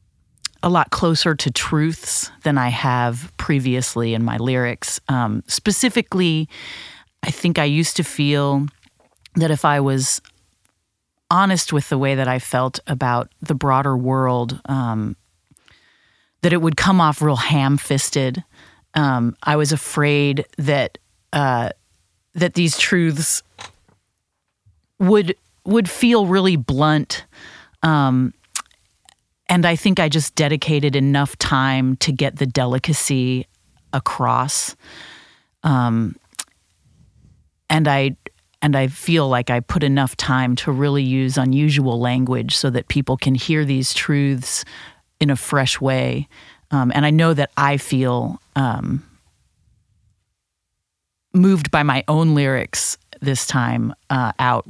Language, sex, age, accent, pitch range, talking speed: English, female, 40-59, American, 125-155 Hz, 125 wpm